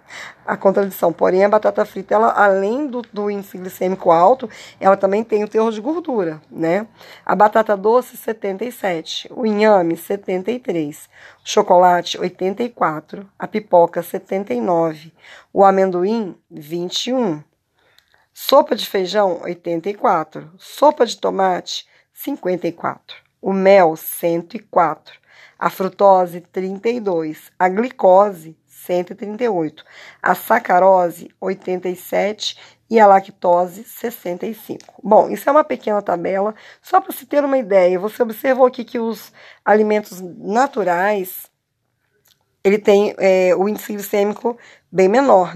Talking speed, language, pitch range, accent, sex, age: 115 wpm, Portuguese, 180-225 Hz, Brazilian, female, 20-39